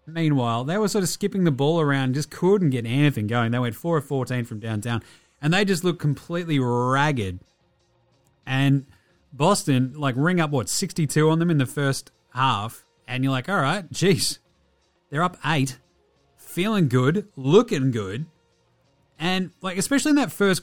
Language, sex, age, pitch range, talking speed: English, male, 30-49, 125-165 Hz, 170 wpm